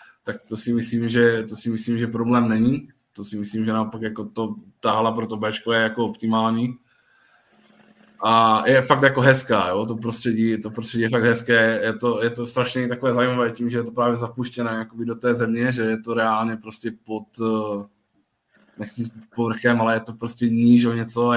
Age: 20-39